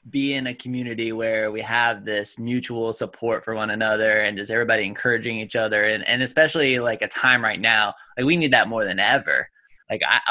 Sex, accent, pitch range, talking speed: male, American, 115-145 Hz, 210 wpm